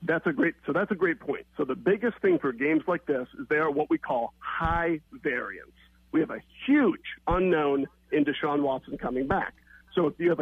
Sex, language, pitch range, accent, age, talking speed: male, English, 165-215 Hz, American, 50-69, 220 wpm